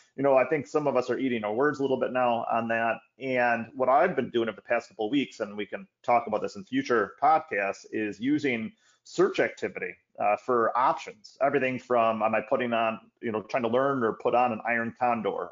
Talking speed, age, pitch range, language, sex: 235 wpm, 30-49, 110-135 Hz, English, male